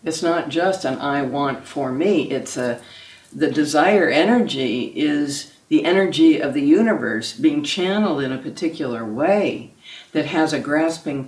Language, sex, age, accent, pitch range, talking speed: English, female, 60-79, American, 150-195 Hz, 155 wpm